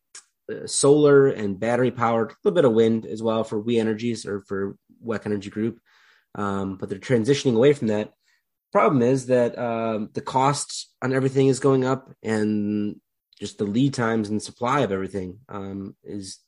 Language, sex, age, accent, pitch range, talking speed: English, male, 30-49, American, 105-120 Hz, 175 wpm